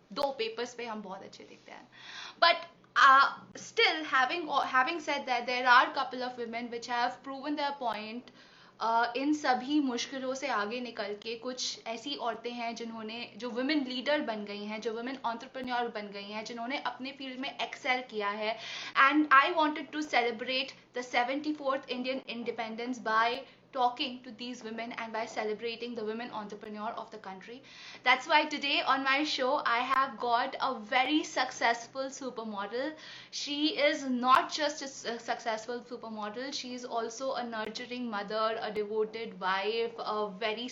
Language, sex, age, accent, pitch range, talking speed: Hindi, female, 20-39, native, 230-270 Hz, 140 wpm